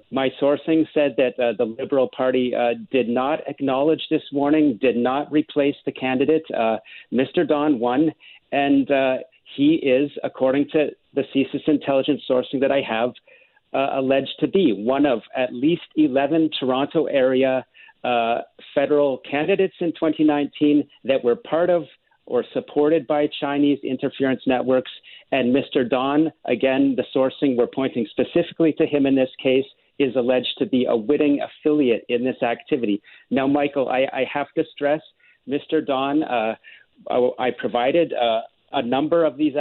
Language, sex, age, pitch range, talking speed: English, male, 50-69, 130-150 Hz, 155 wpm